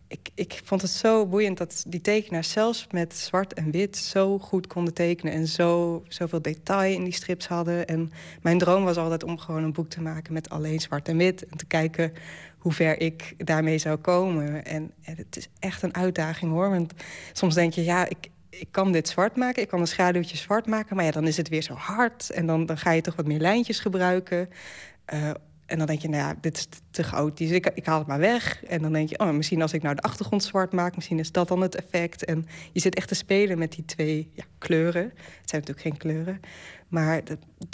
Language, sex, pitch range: Dutch, female, 160-185 Hz